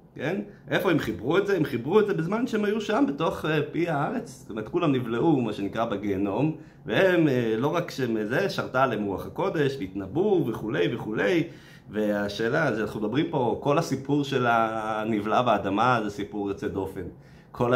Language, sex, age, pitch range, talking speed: Hebrew, male, 30-49, 110-155 Hz, 160 wpm